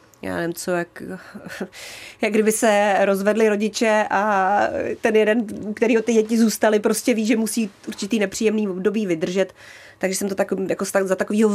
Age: 30-49